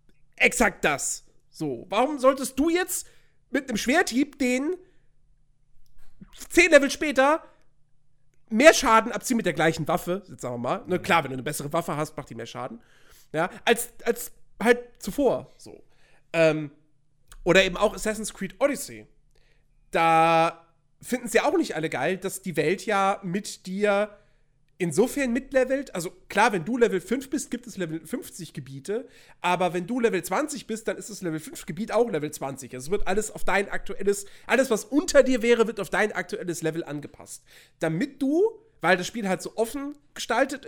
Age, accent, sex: 40-59, German, male